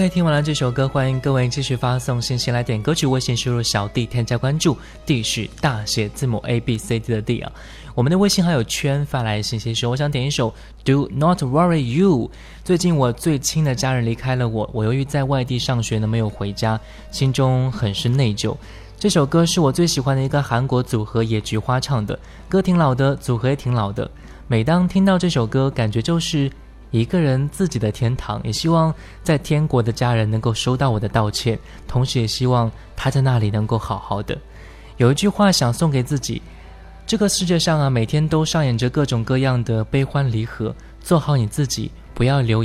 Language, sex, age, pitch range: Chinese, male, 20-39, 115-145 Hz